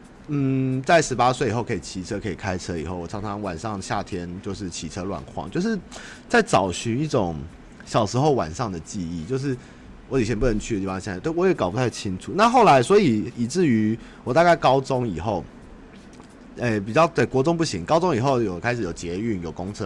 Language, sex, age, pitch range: Chinese, male, 30-49, 100-140 Hz